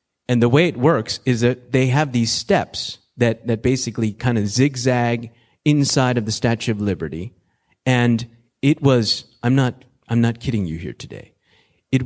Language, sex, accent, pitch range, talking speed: English, male, American, 110-150 Hz, 170 wpm